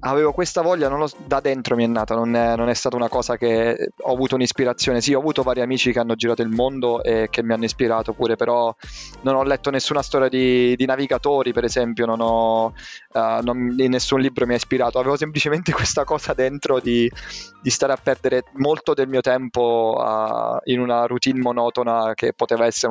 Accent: native